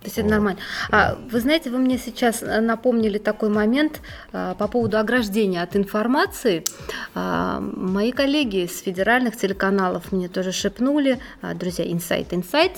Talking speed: 145 wpm